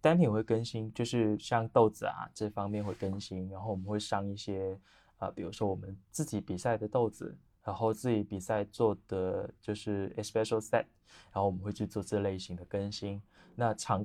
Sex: male